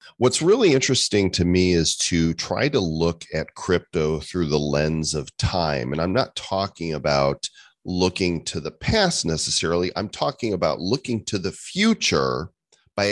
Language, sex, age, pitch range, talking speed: English, male, 40-59, 80-105 Hz, 160 wpm